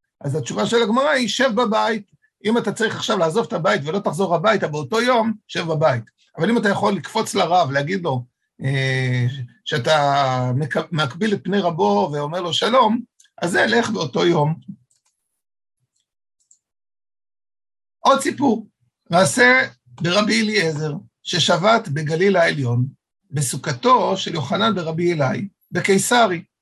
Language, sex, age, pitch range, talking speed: Hebrew, male, 50-69, 145-215 Hz, 125 wpm